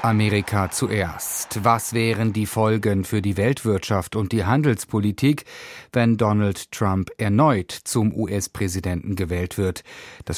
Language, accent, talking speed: German, German, 120 wpm